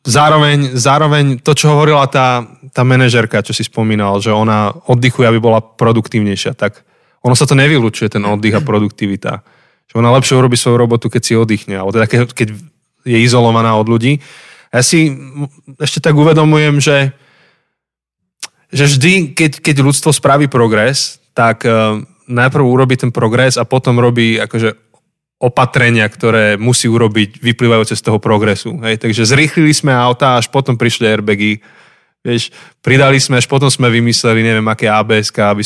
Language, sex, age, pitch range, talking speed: Slovak, male, 20-39, 110-135 Hz, 155 wpm